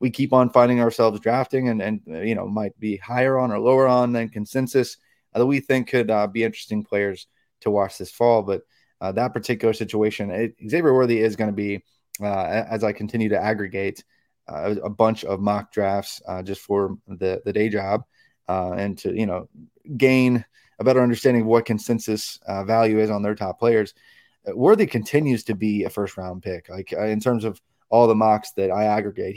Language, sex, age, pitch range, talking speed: English, male, 20-39, 100-115 Hz, 205 wpm